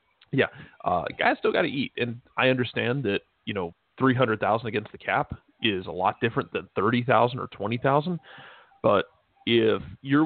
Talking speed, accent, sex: 180 wpm, American, male